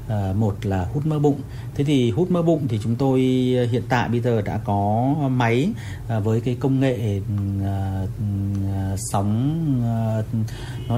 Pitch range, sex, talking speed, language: 105-125 Hz, male, 170 wpm, Vietnamese